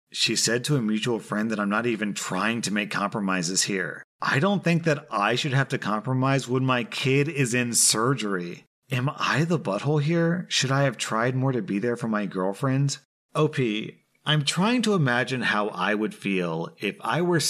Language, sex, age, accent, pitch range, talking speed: English, male, 30-49, American, 115-150 Hz, 200 wpm